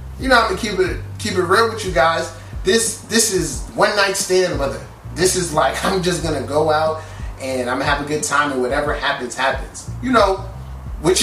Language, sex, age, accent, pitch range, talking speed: English, male, 20-39, American, 125-165 Hz, 220 wpm